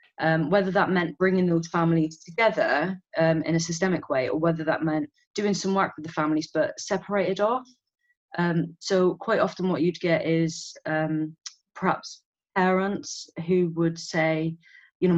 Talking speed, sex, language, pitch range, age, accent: 165 wpm, female, English, 160-190 Hz, 20-39, British